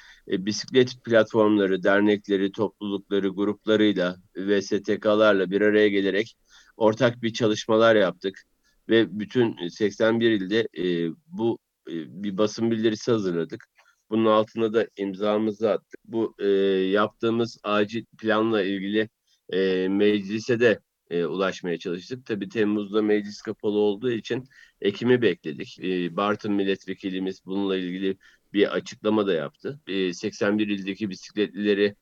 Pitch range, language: 95-110 Hz, Turkish